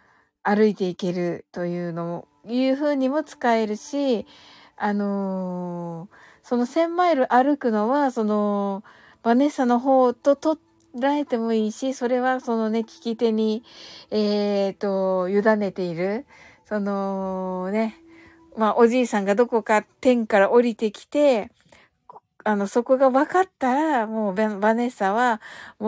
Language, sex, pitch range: Japanese, female, 205-255 Hz